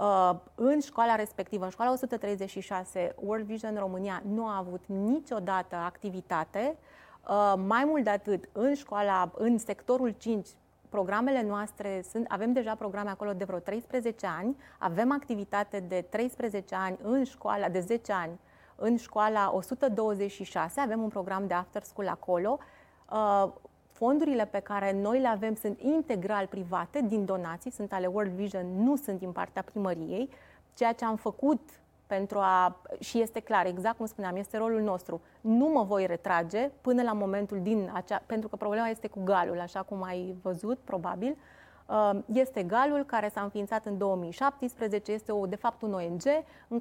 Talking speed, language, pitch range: 155 wpm, Romanian, 185-230 Hz